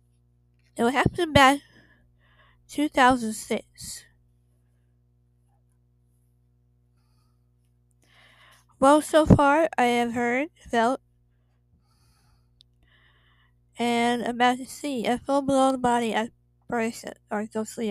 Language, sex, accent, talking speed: English, female, American, 70 wpm